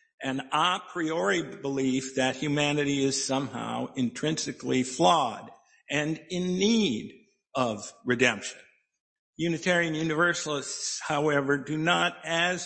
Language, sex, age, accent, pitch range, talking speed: English, male, 50-69, American, 130-180 Hz, 100 wpm